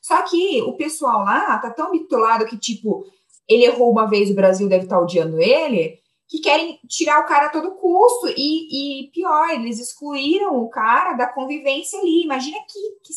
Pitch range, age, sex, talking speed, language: 225-310 Hz, 20-39, female, 185 wpm, Portuguese